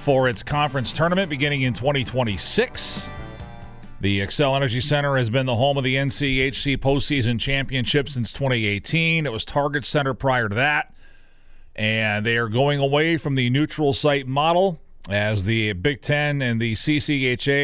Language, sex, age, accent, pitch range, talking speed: English, male, 40-59, American, 110-145 Hz, 155 wpm